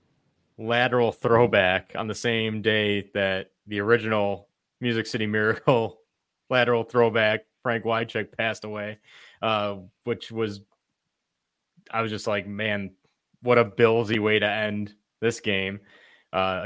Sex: male